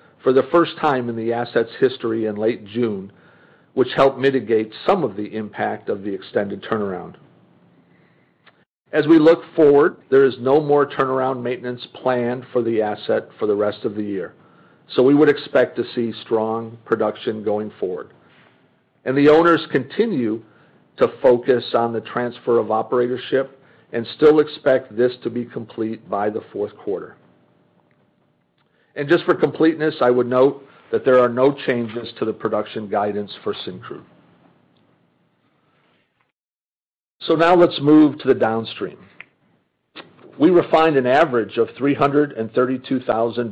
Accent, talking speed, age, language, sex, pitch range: American, 145 wpm, 50-69, English, male, 110-135 Hz